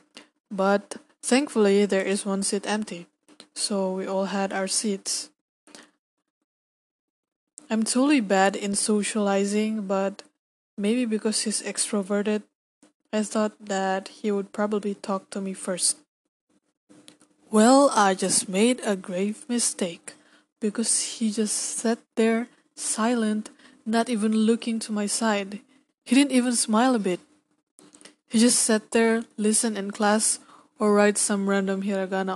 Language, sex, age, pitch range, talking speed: English, female, 20-39, 195-230 Hz, 130 wpm